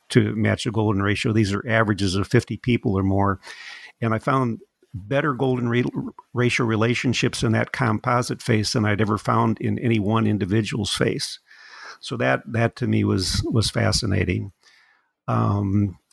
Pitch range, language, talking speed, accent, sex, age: 105-125 Hz, English, 160 wpm, American, male, 50-69